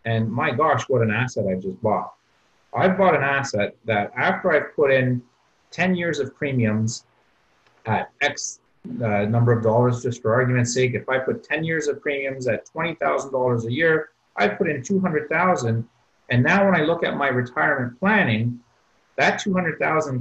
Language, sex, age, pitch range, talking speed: English, male, 30-49, 120-150 Hz, 175 wpm